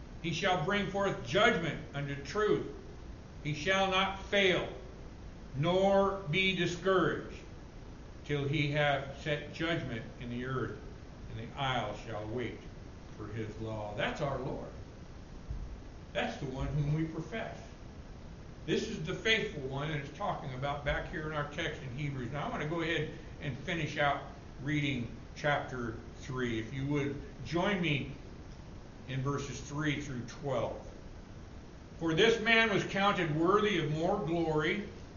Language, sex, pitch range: English, male, 130-175 Hz